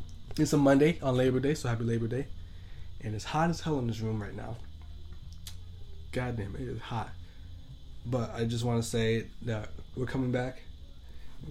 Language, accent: English, American